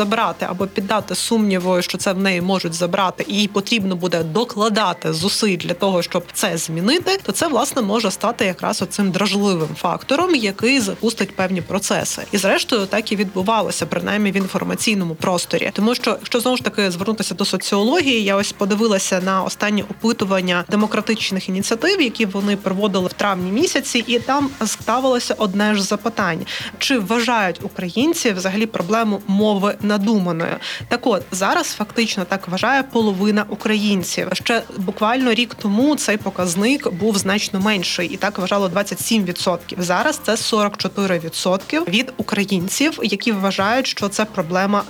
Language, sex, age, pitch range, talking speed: Ukrainian, female, 20-39, 190-225 Hz, 150 wpm